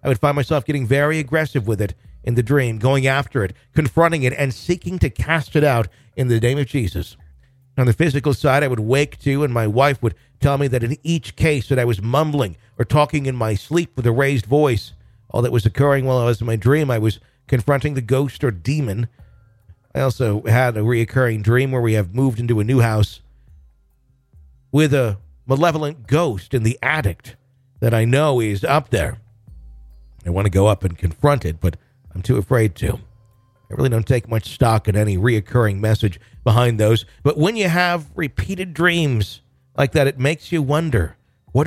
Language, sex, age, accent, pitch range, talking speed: English, male, 50-69, American, 105-140 Hz, 205 wpm